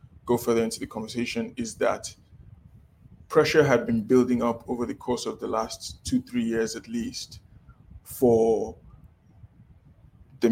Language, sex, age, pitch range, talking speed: English, male, 20-39, 110-130 Hz, 145 wpm